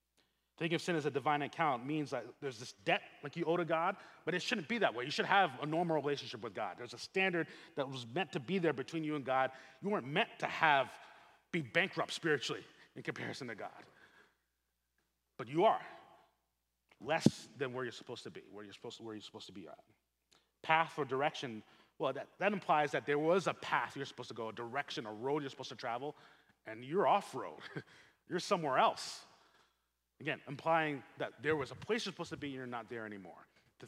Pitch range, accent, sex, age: 110-165 Hz, American, male, 30-49